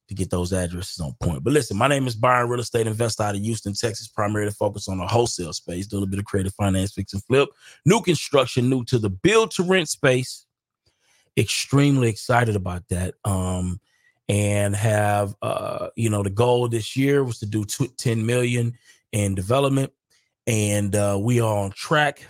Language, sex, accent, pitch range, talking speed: English, male, American, 100-125 Hz, 190 wpm